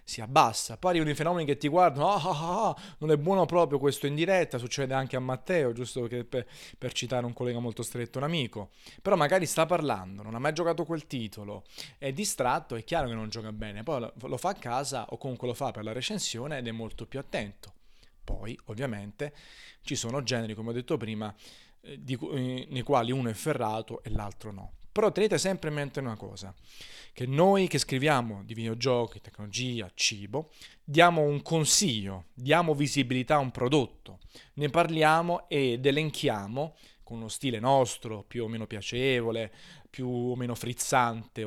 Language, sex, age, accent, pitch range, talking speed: Italian, male, 30-49, native, 115-150 Hz, 175 wpm